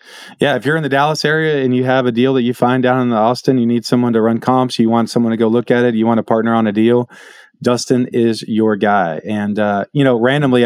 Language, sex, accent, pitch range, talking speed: English, male, American, 115-135 Hz, 275 wpm